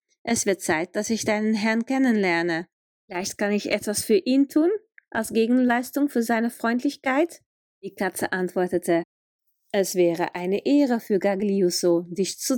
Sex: female